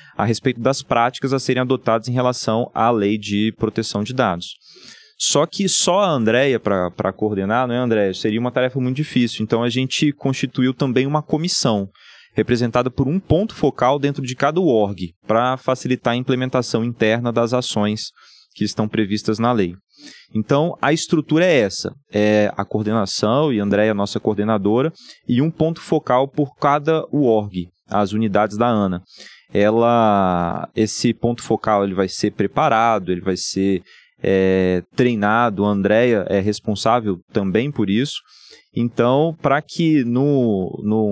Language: Portuguese